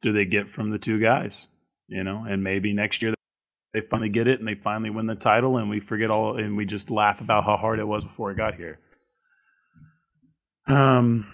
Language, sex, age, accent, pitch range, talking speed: English, male, 30-49, American, 100-120 Hz, 215 wpm